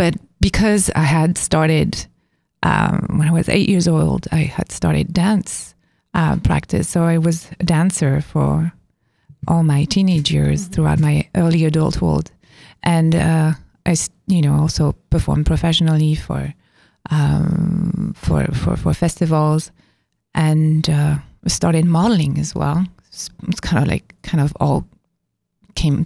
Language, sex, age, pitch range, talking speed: English, female, 30-49, 155-175 Hz, 140 wpm